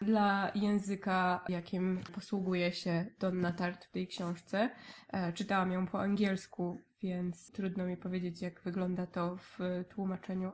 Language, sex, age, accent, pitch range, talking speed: Polish, female, 20-39, native, 175-200 Hz, 130 wpm